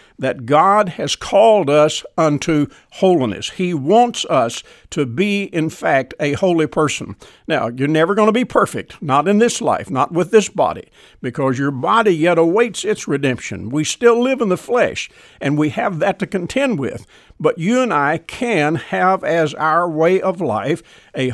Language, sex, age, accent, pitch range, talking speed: English, male, 60-79, American, 145-205 Hz, 180 wpm